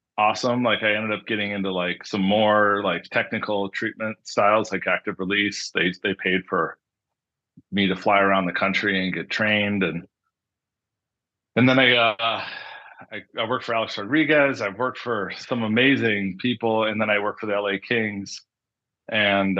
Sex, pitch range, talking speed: male, 95-115 Hz, 170 wpm